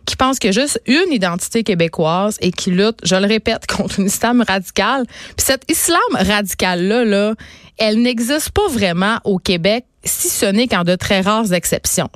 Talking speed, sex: 190 wpm, female